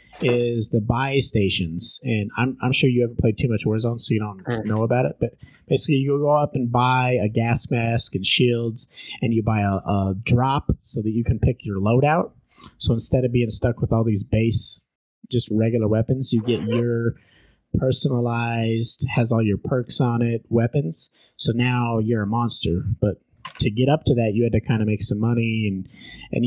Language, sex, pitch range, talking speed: English, male, 110-130 Hz, 200 wpm